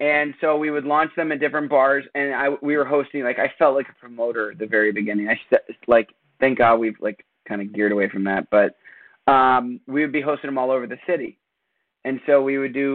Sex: male